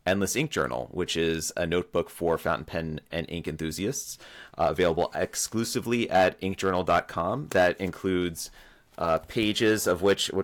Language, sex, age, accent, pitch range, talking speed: English, male, 30-49, American, 90-105 Hz, 140 wpm